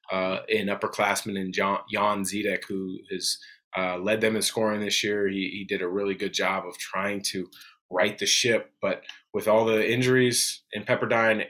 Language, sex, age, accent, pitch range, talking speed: English, male, 30-49, American, 100-125 Hz, 195 wpm